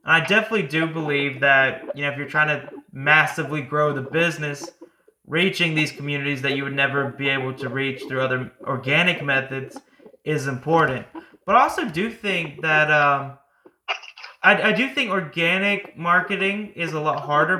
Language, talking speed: English, 170 wpm